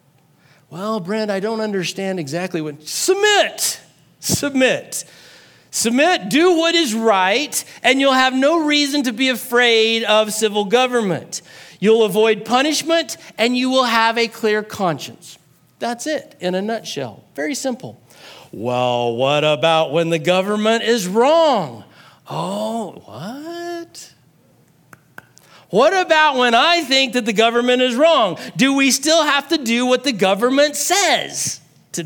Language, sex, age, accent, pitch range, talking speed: English, male, 40-59, American, 155-255 Hz, 140 wpm